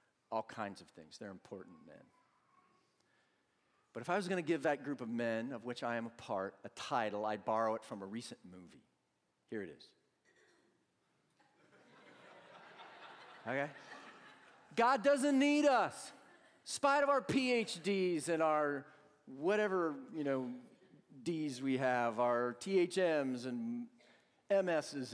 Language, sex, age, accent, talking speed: English, male, 50-69, American, 135 wpm